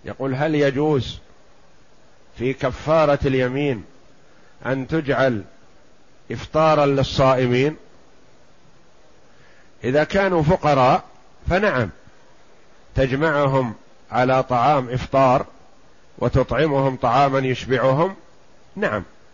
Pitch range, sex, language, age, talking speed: 130-155 Hz, male, Arabic, 50-69, 70 wpm